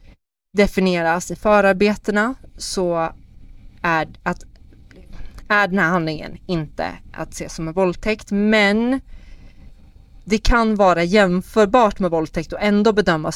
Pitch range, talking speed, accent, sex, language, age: 160-205 Hz, 115 wpm, native, female, Swedish, 30-49